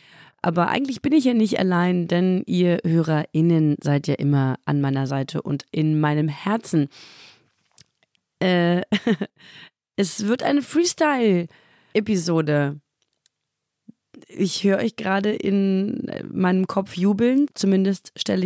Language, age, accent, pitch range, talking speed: German, 30-49, German, 160-195 Hz, 115 wpm